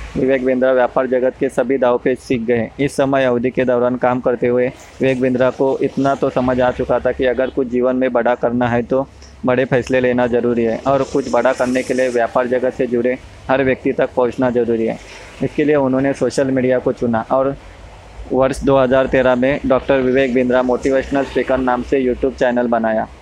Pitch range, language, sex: 125-135 Hz, English, male